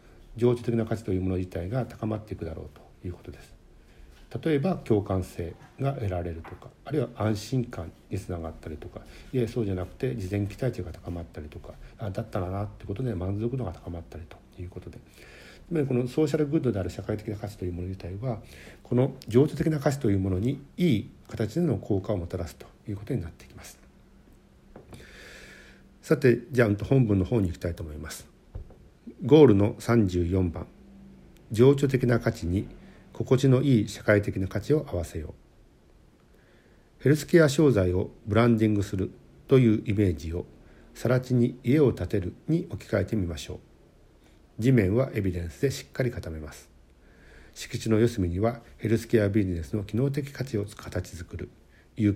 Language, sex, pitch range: Japanese, male, 90-125 Hz